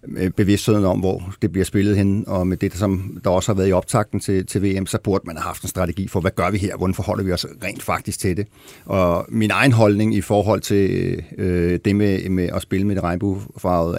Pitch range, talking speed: 95-110 Hz, 250 wpm